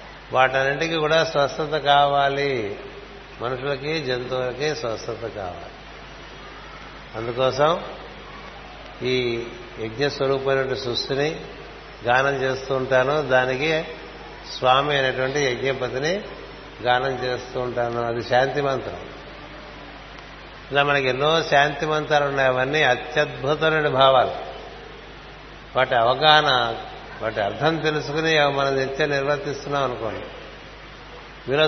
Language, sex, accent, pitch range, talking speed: Telugu, male, native, 130-150 Hz, 85 wpm